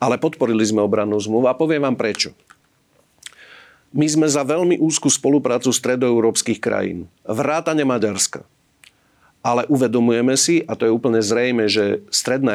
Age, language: 40-59, Slovak